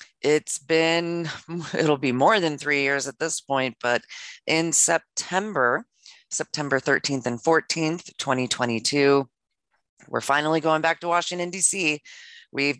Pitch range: 125-160 Hz